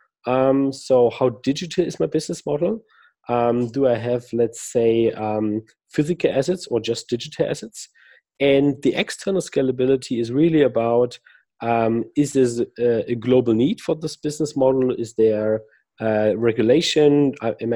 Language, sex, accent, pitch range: English, male, German, 110-135 Hz